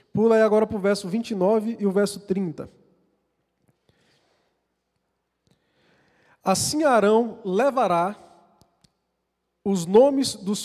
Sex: male